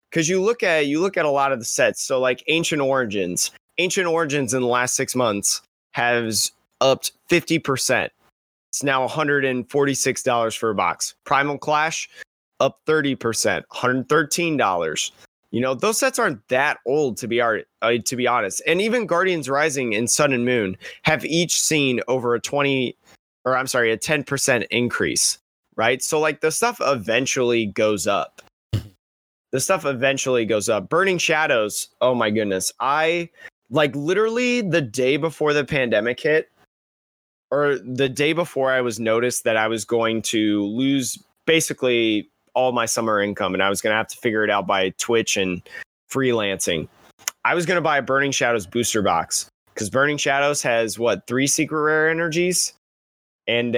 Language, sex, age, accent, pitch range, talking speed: English, male, 20-39, American, 115-150 Hz, 175 wpm